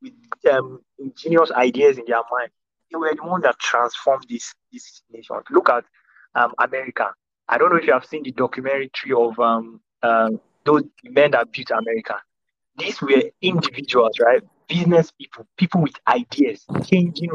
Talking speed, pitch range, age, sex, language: 165 wpm, 130-180 Hz, 20-39, male, English